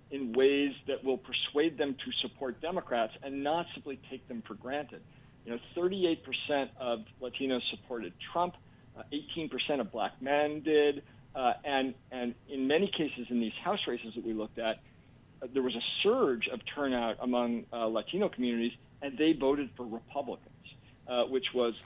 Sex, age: male, 50-69